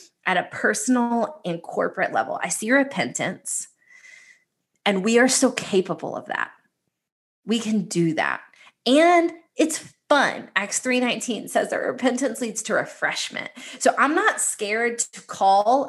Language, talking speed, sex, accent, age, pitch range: English, 140 wpm, female, American, 20-39, 200-255 Hz